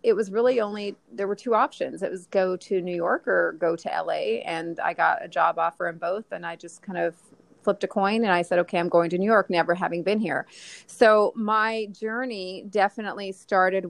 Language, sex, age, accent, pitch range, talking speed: English, female, 30-49, American, 170-200 Hz, 225 wpm